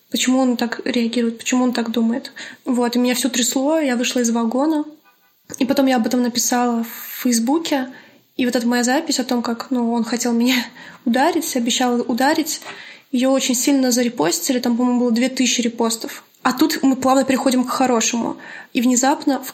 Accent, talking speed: native, 180 wpm